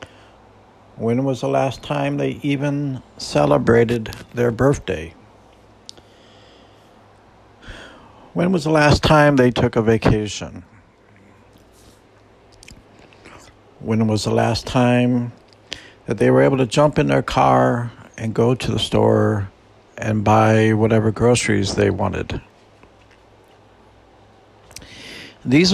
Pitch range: 100-120 Hz